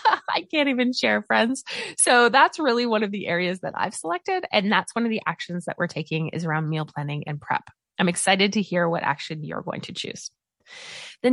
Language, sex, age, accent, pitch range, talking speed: English, female, 20-39, American, 170-245 Hz, 215 wpm